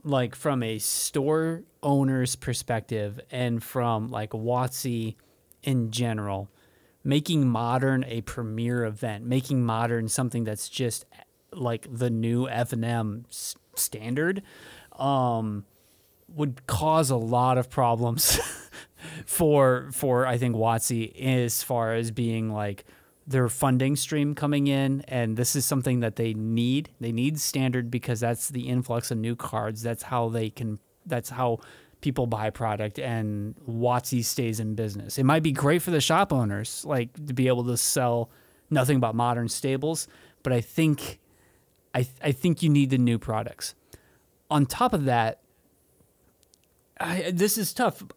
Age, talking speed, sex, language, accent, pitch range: 30-49, 145 wpm, male, English, American, 115-140 Hz